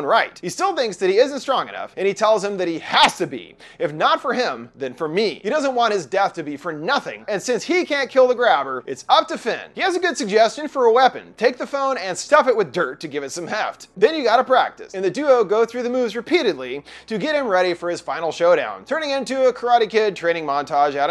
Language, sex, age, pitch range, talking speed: English, male, 30-49, 175-285 Hz, 265 wpm